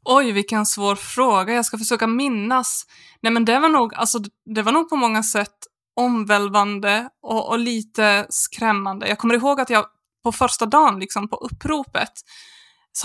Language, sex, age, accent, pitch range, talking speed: Swedish, female, 20-39, native, 200-235 Hz, 170 wpm